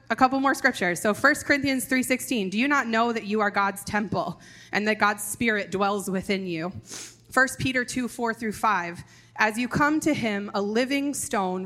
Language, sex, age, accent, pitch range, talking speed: English, female, 20-39, American, 185-245 Hz, 200 wpm